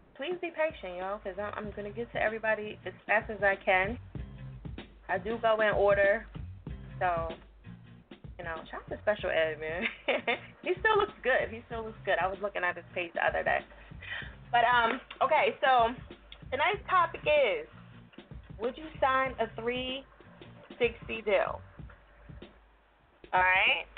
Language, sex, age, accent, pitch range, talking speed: English, female, 20-39, American, 185-255 Hz, 160 wpm